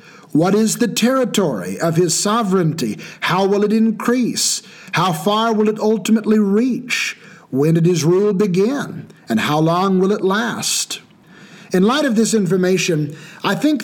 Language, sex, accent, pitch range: English, male, American, 160-215 Hz